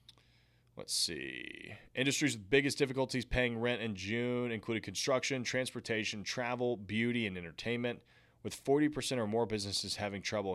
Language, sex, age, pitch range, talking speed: English, male, 20-39, 105-125 Hz, 135 wpm